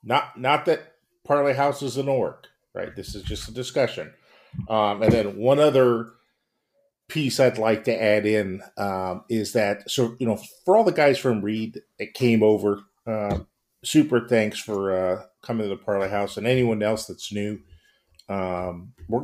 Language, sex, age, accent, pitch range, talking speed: English, male, 50-69, American, 95-115 Hz, 180 wpm